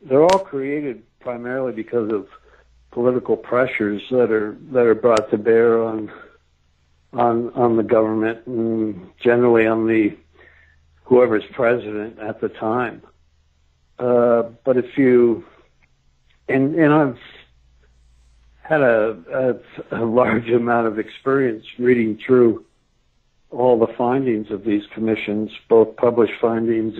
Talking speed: 120 wpm